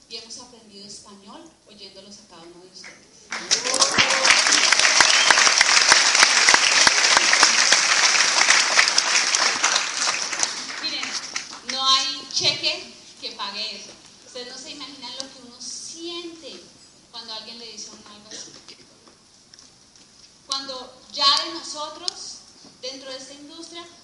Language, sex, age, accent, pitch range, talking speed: Spanish, female, 30-49, Colombian, 220-300 Hz, 95 wpm